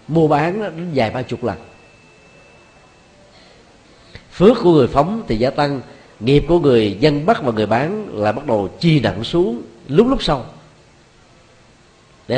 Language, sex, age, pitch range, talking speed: Vietnamese, male, 40-59, 115-155 Hz, 155 wpm